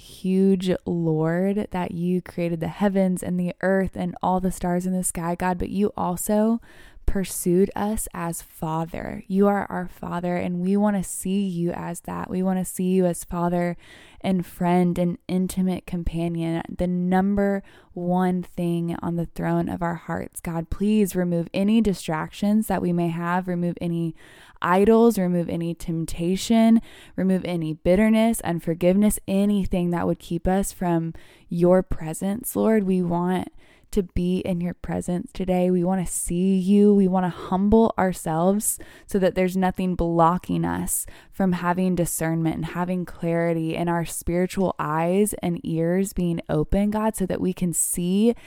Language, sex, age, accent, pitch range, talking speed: English, female, 20-39, American, 170-190 Hz, 160 wpm